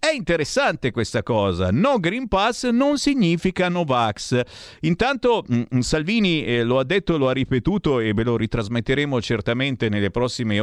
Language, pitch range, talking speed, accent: Italian, 105-160 Hz, 145 wpm, native